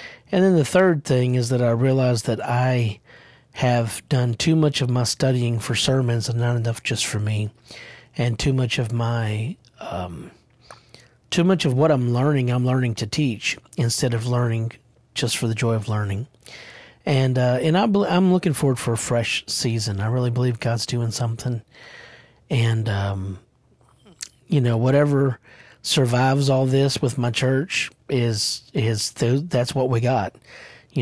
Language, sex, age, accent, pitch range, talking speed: English, male, 40-59, American, 115-140 Hz, 165 wpm